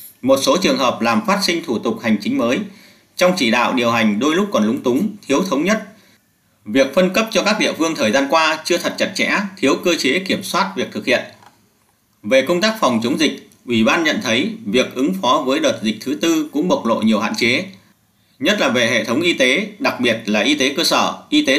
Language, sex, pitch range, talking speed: Vietnamese, male, 155-220 Hz, 240 wpm